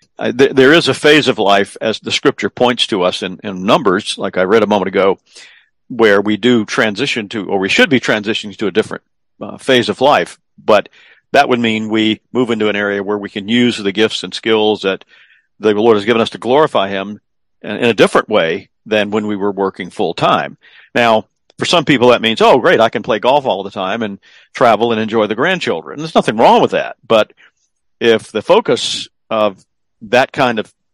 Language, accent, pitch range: English, American, 105-125 Hz